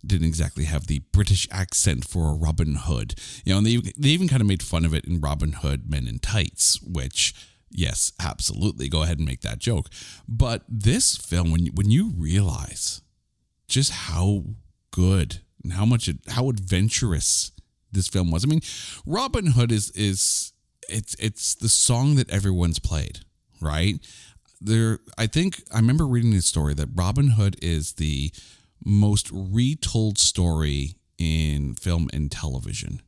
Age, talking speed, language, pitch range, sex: 40-59, 165 wpm, English, 85-110 Hz, male